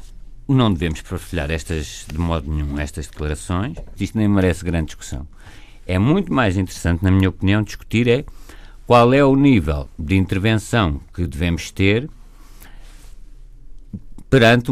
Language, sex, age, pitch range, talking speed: Portuguese, male, 50-69, 80-110 Hz, 135 wpm